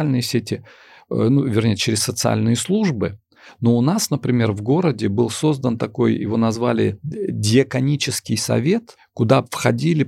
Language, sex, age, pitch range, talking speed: Russian, male, 40-59, 100-135 Hz, 130 wpm